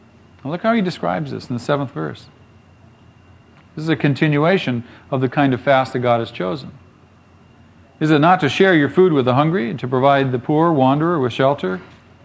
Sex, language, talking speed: male, English, 195 wpm